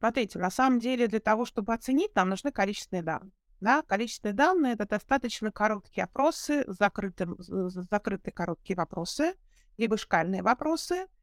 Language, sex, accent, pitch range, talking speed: Russian, female, native, 200-270 Hz, 140 wpm